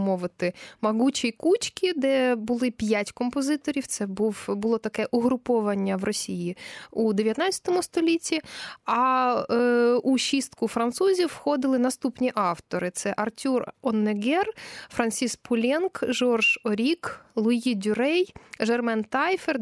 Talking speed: 105 wpm